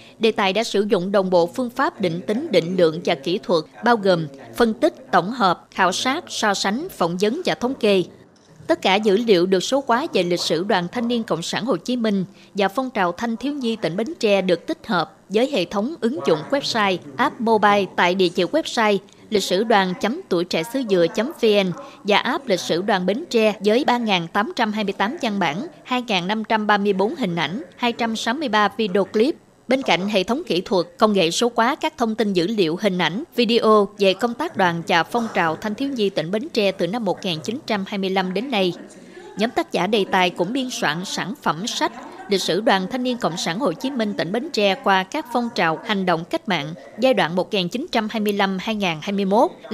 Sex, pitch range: female, 185-240 Hz